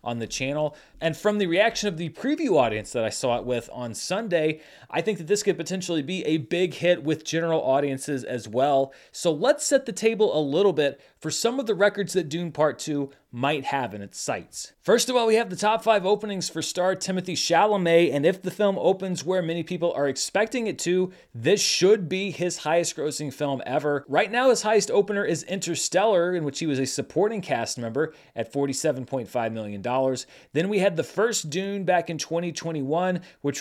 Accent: American